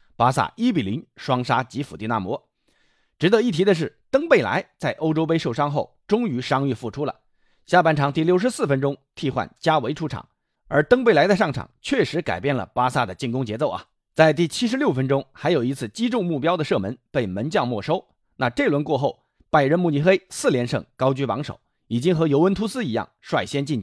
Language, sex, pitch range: Chinese, male, 120-180 Hz